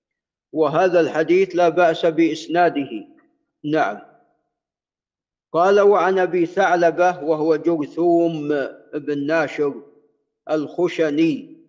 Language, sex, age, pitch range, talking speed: Arabic, male, 50-69, 165-215 Hz, 75 wpm